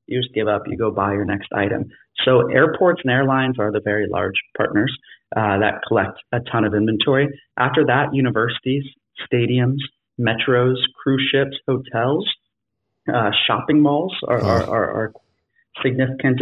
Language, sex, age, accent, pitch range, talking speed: English, male, 30-49, American, 110-130 Hz, 155 wpm